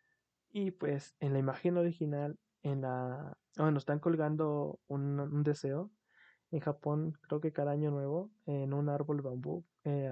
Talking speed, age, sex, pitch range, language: 160 wpm, 20-39, male, 135-155 Hz, Spanish